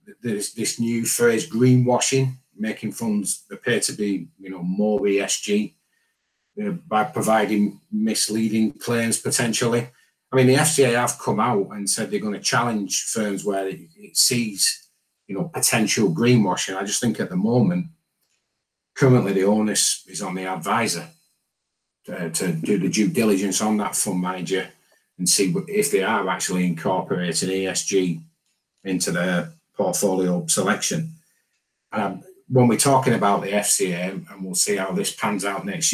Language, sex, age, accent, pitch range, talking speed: English, male, 40-59, British, 100-135 Hz, 150 wpm